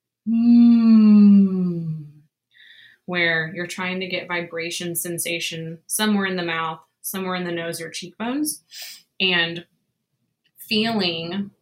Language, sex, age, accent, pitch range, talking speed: English, female, 20-39, American, 170-200 Hz, 105 wpm